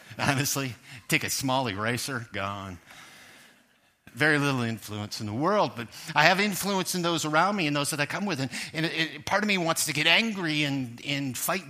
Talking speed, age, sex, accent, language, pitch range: 205 wpm, 50-69, male, American, English, 120-160 Hz